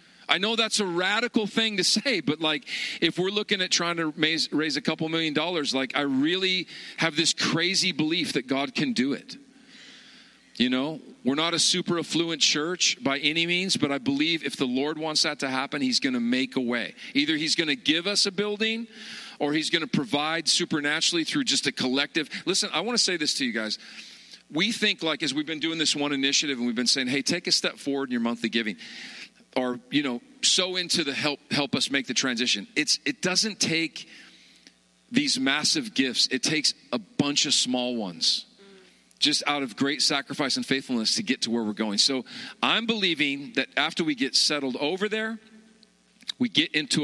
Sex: male